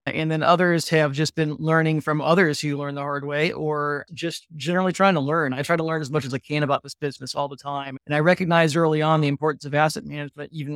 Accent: American